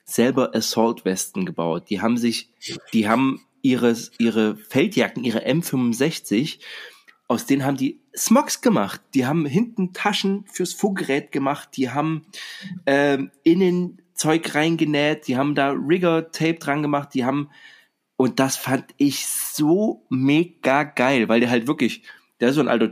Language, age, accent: German, 30-49, German